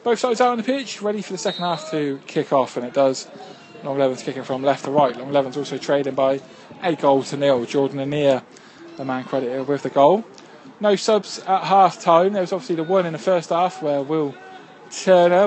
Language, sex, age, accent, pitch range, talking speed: English, male, 20-39, British, 145-170 Hz, 225 wpm